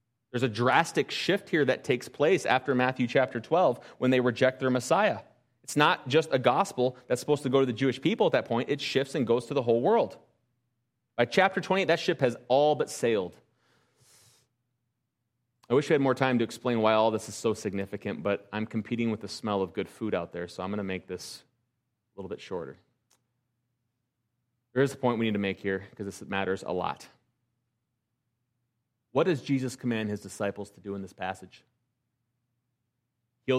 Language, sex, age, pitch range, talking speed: English, male, 30-49, 115-125 Hz, 200 wpm